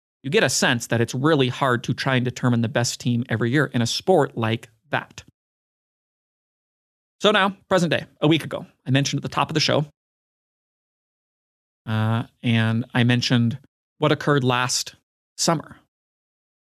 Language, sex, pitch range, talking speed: English, male, 125-150 Hz, 160 wpm